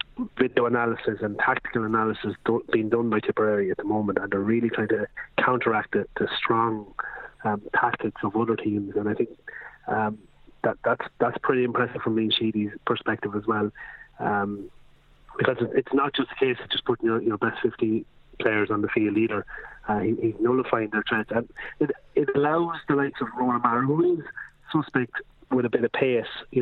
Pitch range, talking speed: 110-125 Hz, 185 wpm